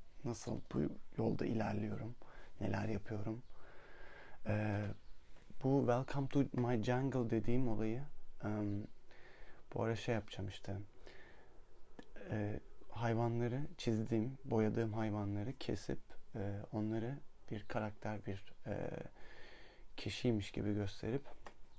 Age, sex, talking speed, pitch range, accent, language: 30-49, male, 95 wpm, 105-120 Hz, native, Turkish